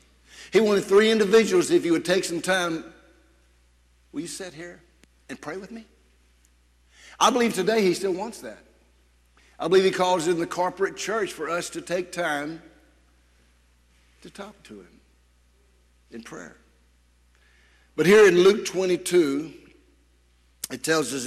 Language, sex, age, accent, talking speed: English, male, 60-79, American, 145 wpm